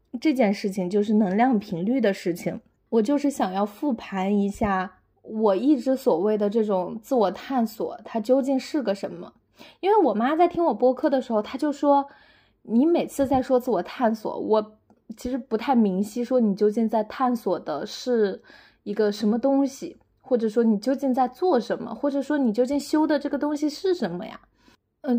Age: 20-39